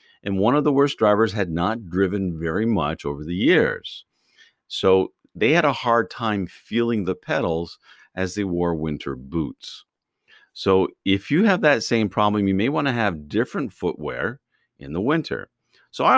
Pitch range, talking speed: 85-115 Hz, 175 wpm